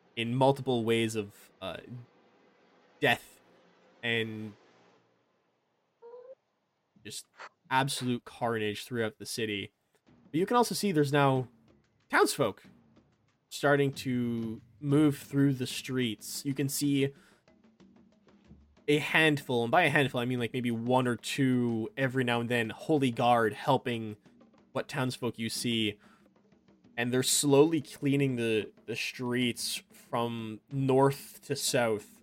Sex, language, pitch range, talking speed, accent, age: male, English, 115-145 Hz, 120 wpm, American, 20-39